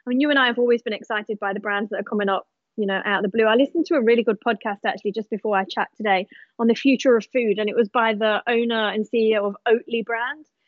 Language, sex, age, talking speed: English, female, 20-39, 285 wpm